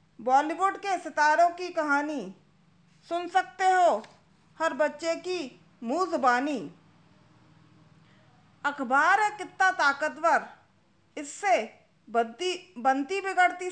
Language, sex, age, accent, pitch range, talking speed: Hindi, female, 40-59, native, 290-350 Hz, 90 wpm